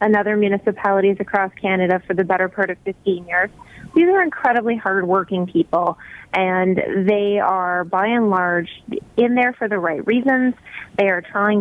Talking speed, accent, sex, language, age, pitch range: 165 wpm, American, female, English, 30-49, 185-225 Hz